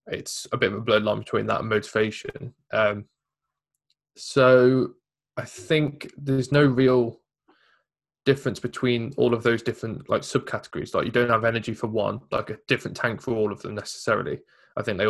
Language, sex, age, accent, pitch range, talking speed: English, male, 20-39, British, 110-125 Hz, 175 wpm